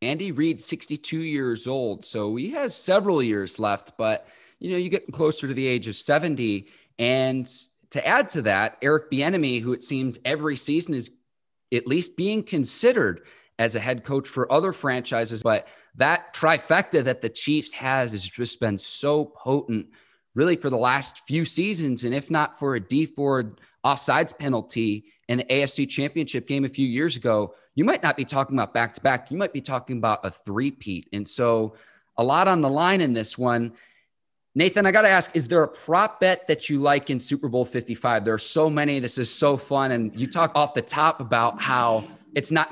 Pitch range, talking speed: 120-150 Hz, 200 wpm